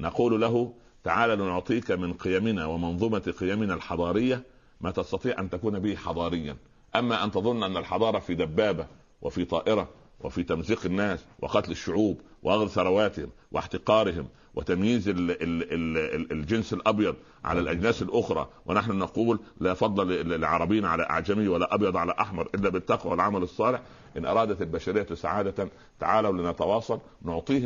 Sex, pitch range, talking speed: male, 85-110 Hz, 130 wpm